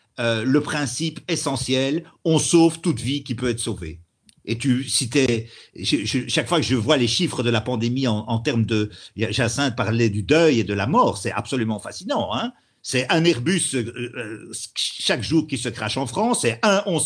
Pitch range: 115-160 Hz